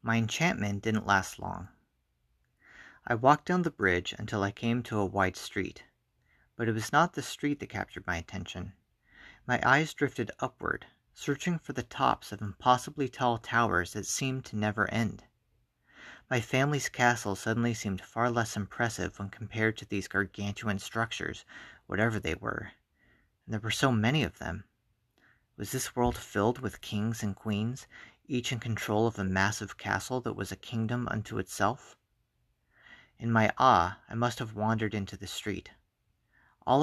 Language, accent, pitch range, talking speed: English, American, 100-120 Hz, 165 wpm